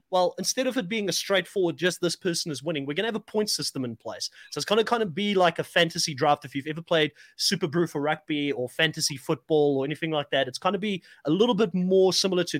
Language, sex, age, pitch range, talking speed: English, male, 30-49, 145-190 Hz, 270 wpm